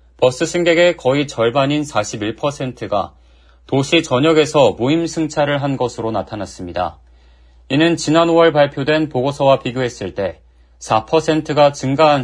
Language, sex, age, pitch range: Korean, male, 30-49, 105-160 Hz